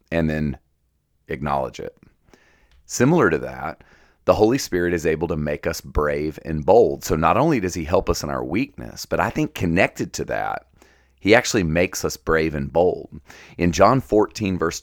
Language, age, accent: English, 40-59, American